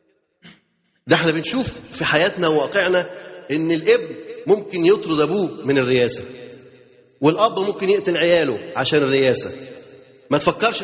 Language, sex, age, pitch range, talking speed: Arabic, male, 30-49, 155-215 Hz, 115 wpm